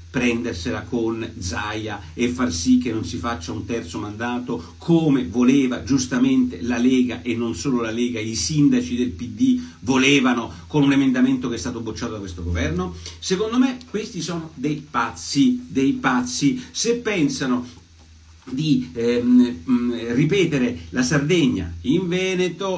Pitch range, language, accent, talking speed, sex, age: 100-140 Hz, Italian, native, 145 wpm, male, 50-69